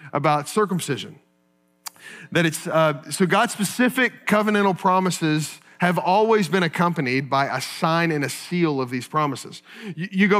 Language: English